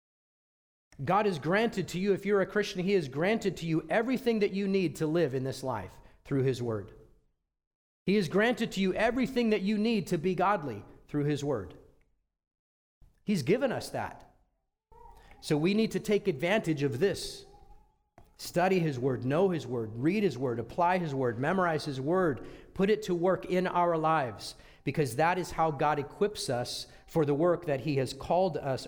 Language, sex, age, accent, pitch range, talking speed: English, male, 40-59, American, 135-200 Hz, 185 wpm